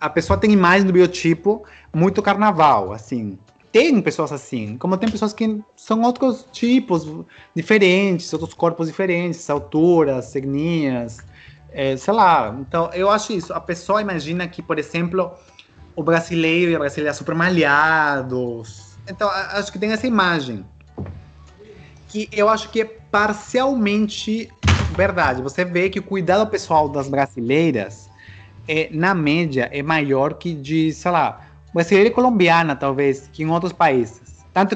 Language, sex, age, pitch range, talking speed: Portuguese, male, 20-39, 145-200 Hz, 145 wpm